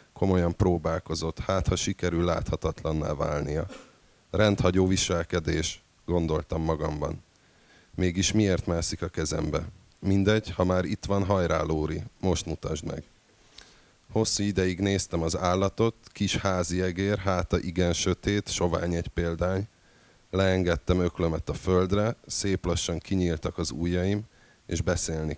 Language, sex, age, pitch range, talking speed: Hungarian, male, 30-49, 80-95 Hz, 120 wpm